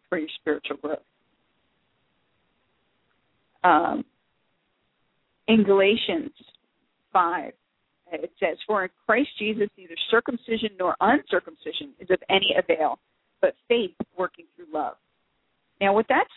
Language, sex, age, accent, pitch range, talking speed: English, female, 40-59, American, 170-225 Hz, 110 wpm